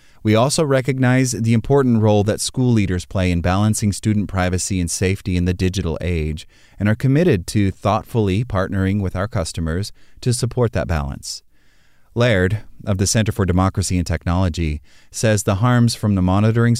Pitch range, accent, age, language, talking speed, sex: 90-115 Hz, American, 30-49, English, 170 wpm, male